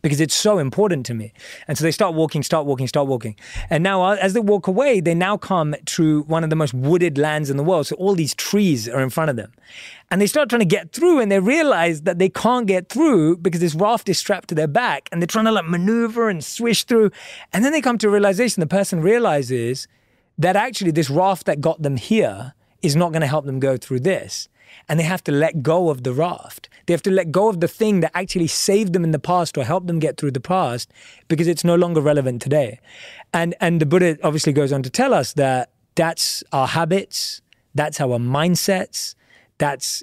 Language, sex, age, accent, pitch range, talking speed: English, male, 20-39, British, 140-190 Hz, 230 wpm